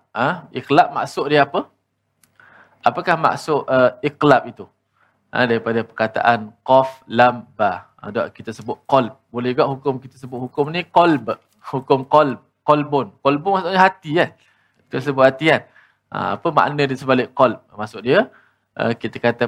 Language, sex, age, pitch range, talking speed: Malayalam, male, 20-39, 120-150 Hz, 170 wpm